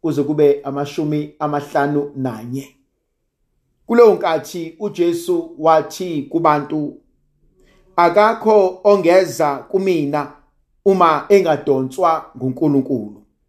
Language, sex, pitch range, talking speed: English, male, 150-210 Hz, 60 wpm